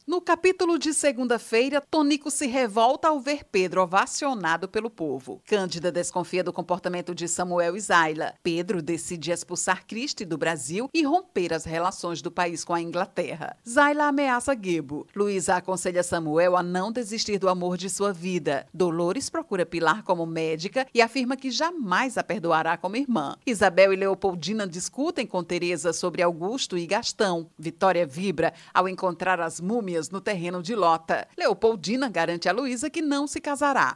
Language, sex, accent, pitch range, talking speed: Portuguese, female, Brazilian, 175-235 Hz, 160 wpm